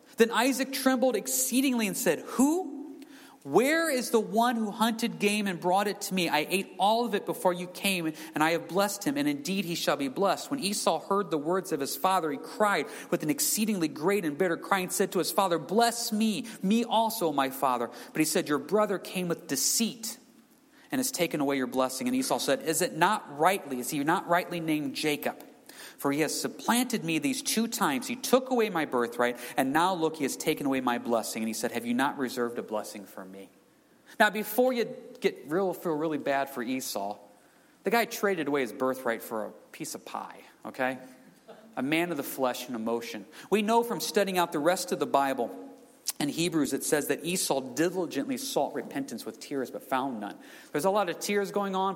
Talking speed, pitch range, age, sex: 215 wpm, 145-230 Hz, 40-59, male